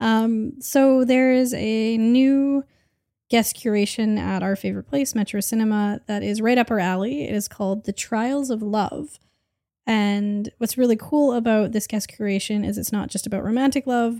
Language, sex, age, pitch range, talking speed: English, female, 10-29, 195-240 Hz, 180 wpm